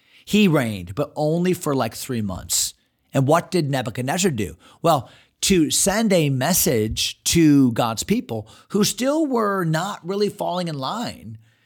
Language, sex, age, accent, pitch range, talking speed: English, male, 40-59, American, 125-165 Hz, 150 wpm